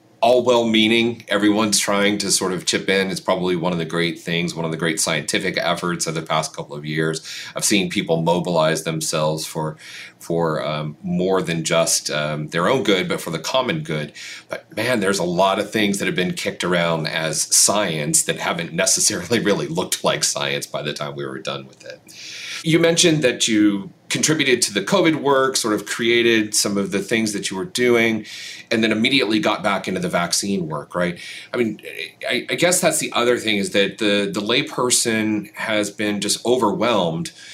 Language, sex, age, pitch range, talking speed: English, male, 40-59, 80-110 Hz, 200 wpm